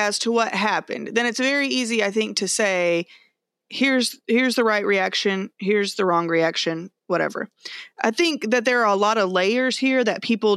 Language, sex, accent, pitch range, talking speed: English, female, American, 180-230 Hz, 195 wpm